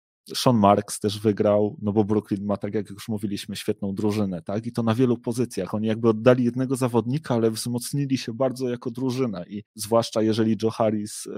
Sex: male